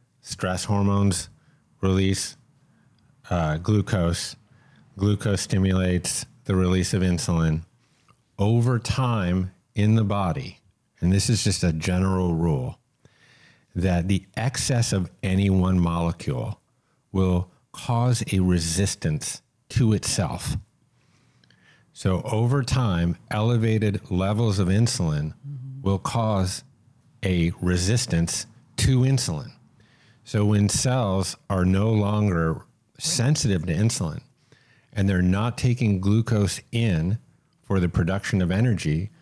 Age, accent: 50-69, American